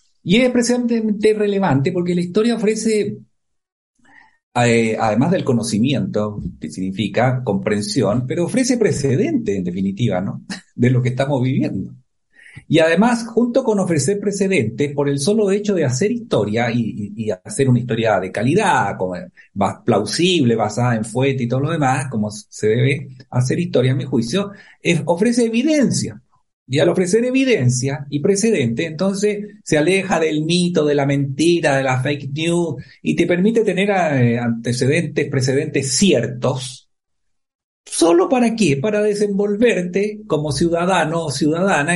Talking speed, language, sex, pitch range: 145 wpm, Spanish, male, 135-205 Hz